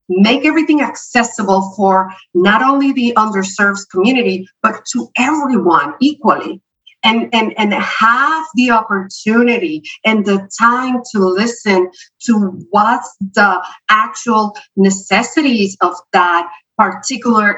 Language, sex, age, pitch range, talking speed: English, female, 50-69, 185-240 Hz, 110 wpm